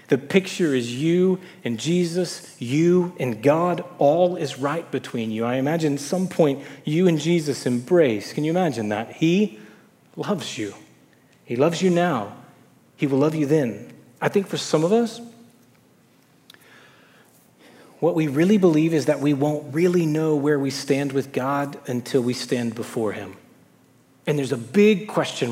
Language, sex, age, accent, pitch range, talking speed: English, male, 30-49, American, 130-175 Hz, 165 wpm